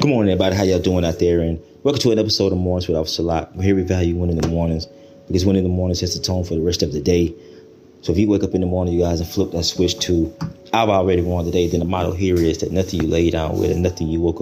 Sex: male